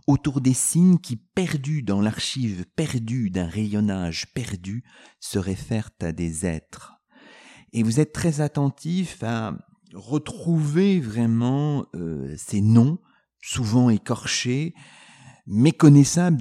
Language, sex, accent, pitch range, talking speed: French, male, French, 100-140 Hz, 115 wpm